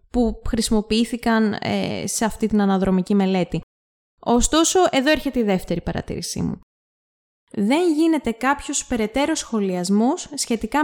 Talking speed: 115 wpm